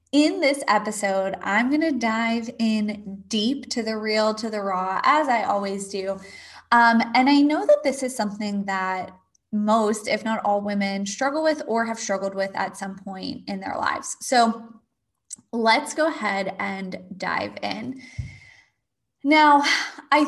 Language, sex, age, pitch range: English, female, 20-39, 200-280 Hz